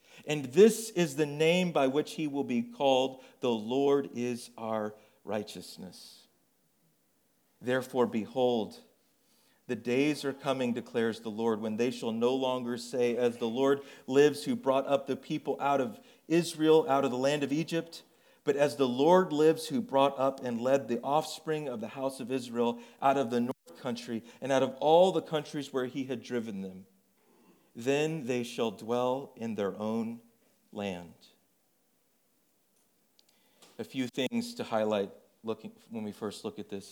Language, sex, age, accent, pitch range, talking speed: English, male, 40-59, American, 115-145 Hz, 165 wpm